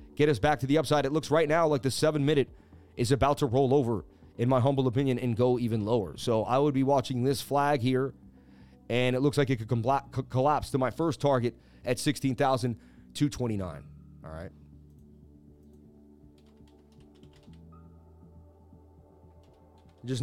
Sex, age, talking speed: male, 30-49, 150 wpm